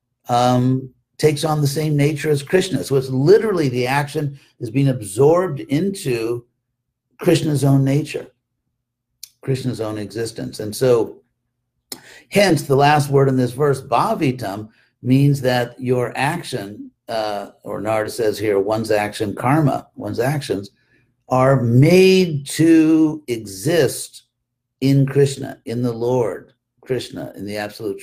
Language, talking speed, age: English, 130 wpm, 50-69